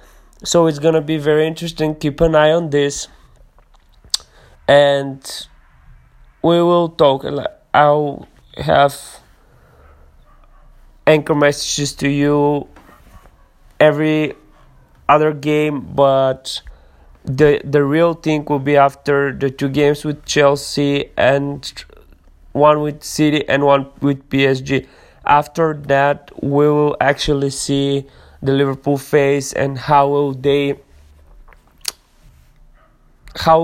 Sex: male